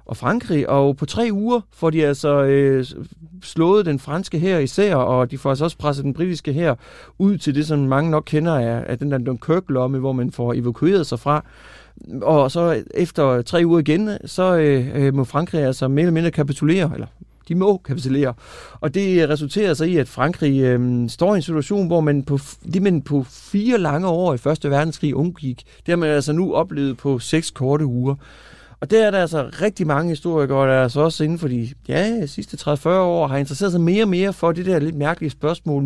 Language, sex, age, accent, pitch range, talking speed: Danish, male, 30-49, native, 135-175 Hz, 220 wpm